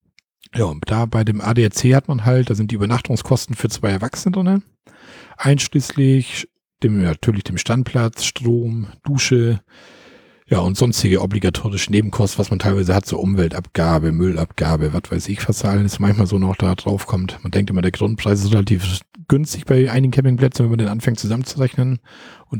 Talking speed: 170 wpm